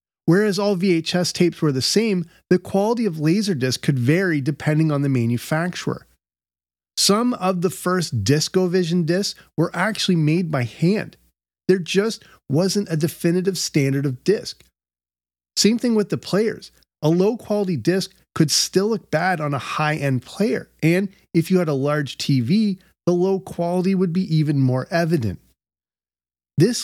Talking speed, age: 150 wpm, 30-49